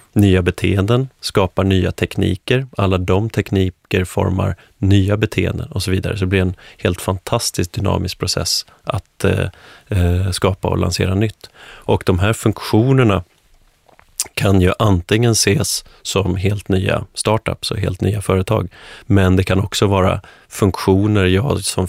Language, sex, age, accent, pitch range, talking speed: Swedish, male, 30-49, native, 95-105 Hz, 140 wpm